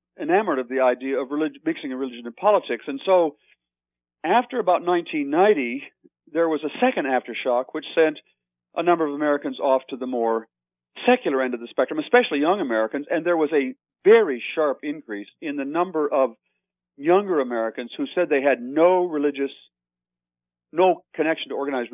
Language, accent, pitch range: English, American, 120-155 Hz